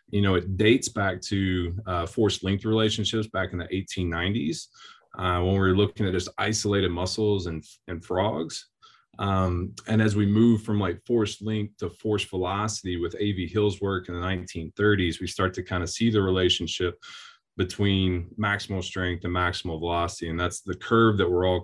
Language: English